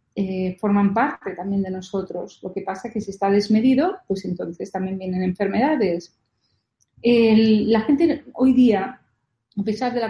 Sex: female